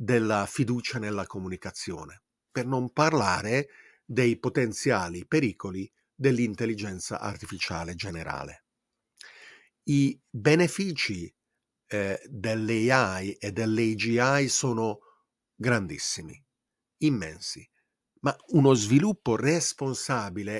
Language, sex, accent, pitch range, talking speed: Italian, male, native, 100-135 Hz, 75 wpm